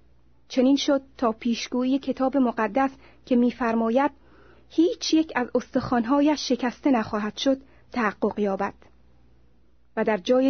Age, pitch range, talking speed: 30-49, 205-275 Hz, 115 wpm